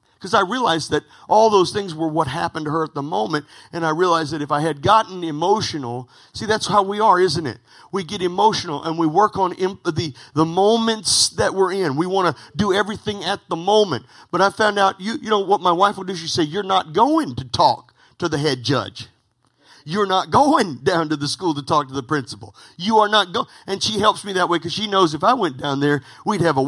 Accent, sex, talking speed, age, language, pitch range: American, male, 245 wpm, 50-69, English, 145-205 Hz